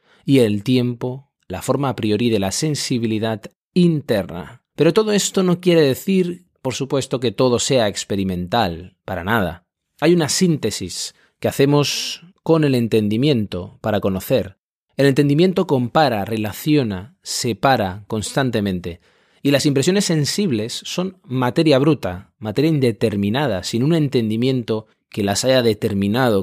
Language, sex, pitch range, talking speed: Spanish, male, 110-150 Hz, 130 wpm